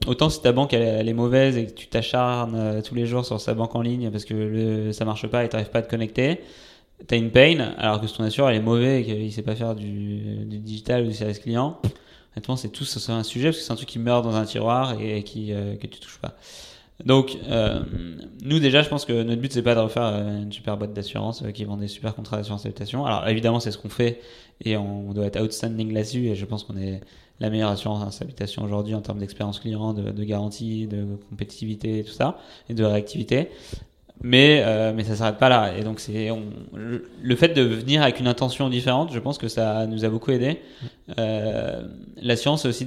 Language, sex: French, male